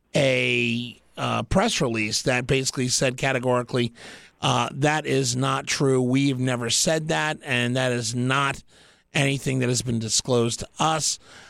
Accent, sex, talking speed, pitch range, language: American, male, 145 wpm, 125-150 Hz, English